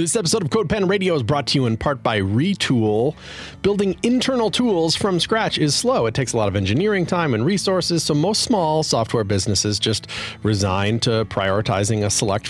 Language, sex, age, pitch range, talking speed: English, male, 40-59, 110-155 Hz, 190 wpm